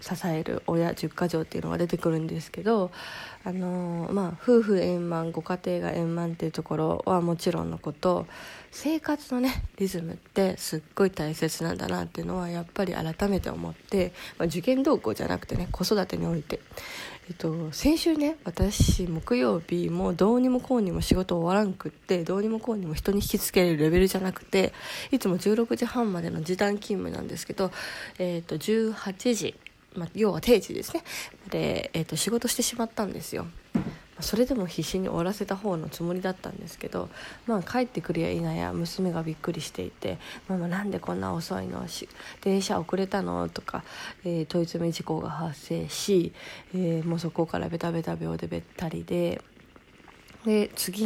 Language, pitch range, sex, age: Japanese, 165-200 Hz, female, 20-39